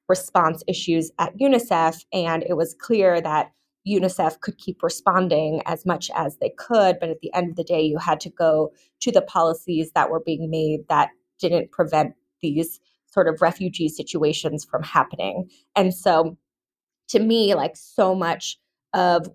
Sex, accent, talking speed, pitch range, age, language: female, American, 170 wpm, 160-185 Hz, 20-39, English